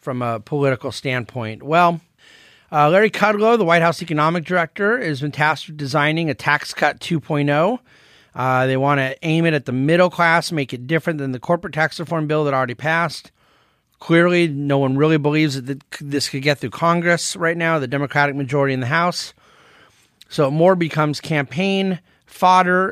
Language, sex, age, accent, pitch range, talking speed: English, male, 40-59, American, 135-170 Hz, 180 wpm